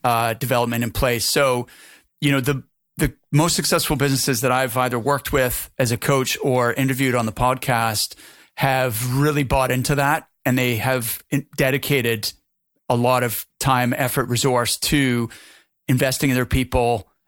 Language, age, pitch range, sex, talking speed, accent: English, 30-49, 125-145 Hz, male, 160 wpm, American